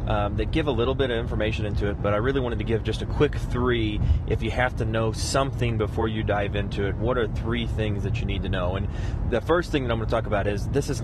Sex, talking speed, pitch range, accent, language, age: male, 290 wpm, 100-115 Hz, American, English, 30-49